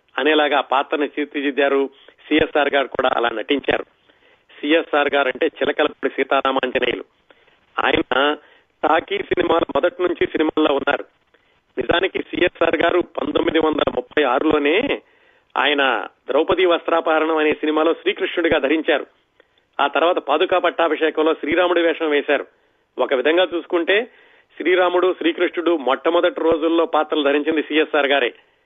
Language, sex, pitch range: Telugu, male, 145-195 Hz